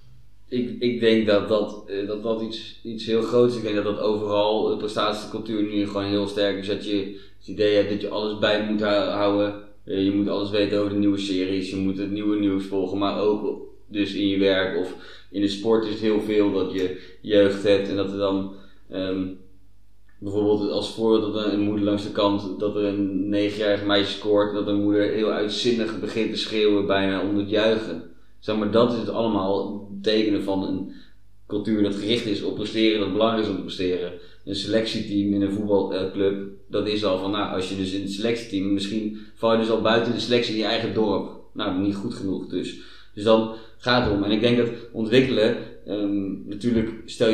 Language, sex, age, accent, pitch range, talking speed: Dutch, male, 20-39, Dutch, 100-110 Hz, 215 wpm